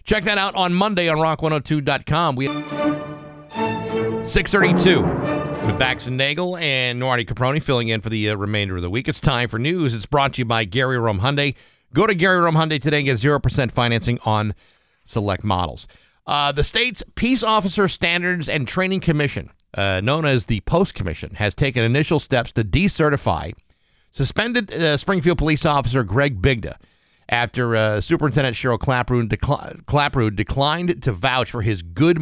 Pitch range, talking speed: 110-150 Hz, 165 wpm